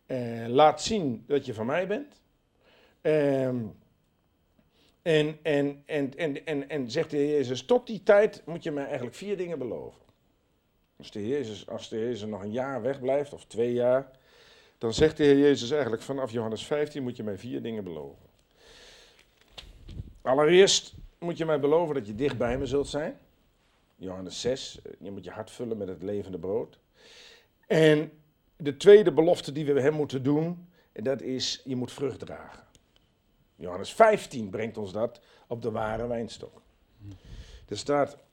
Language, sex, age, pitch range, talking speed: Dutch, male, 50-69, 115-155 Hz, 160 wpm